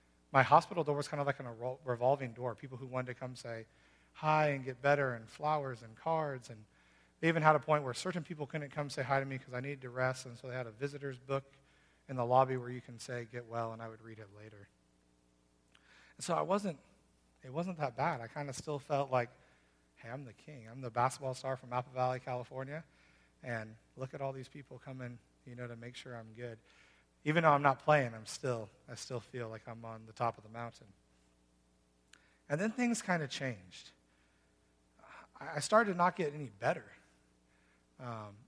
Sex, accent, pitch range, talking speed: male, American, 110-145 Hz, 215 wpm